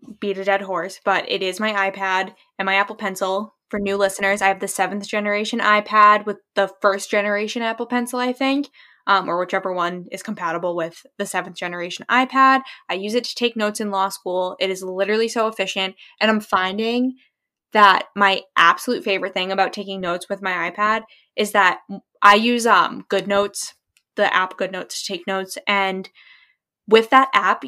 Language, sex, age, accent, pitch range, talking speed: English, female, 10-29, American, 190-225 Hz, 185 wpm